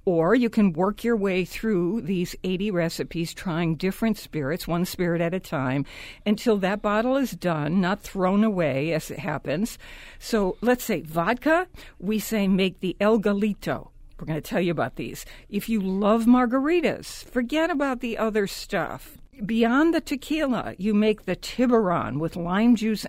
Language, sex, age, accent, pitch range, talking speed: English, female, 60-79, American, 175-235 Hz, 165 wpm